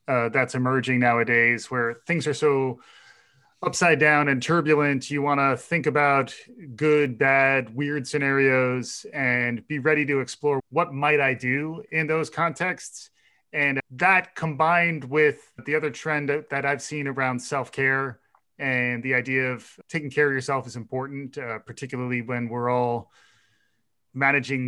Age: 30-49